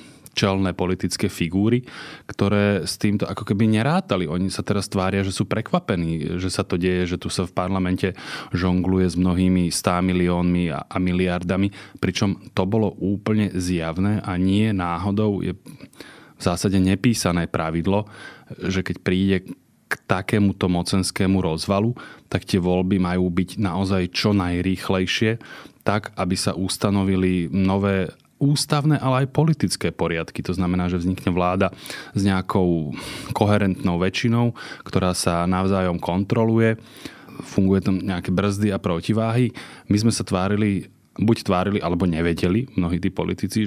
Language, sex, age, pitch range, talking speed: Slovak, male, 30-49, 90-105 Hz, 140 wpm